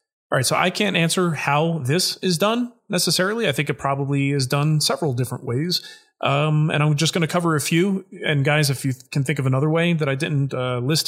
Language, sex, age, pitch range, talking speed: English, male, 30-49, 130-175 Hz, 240 wpm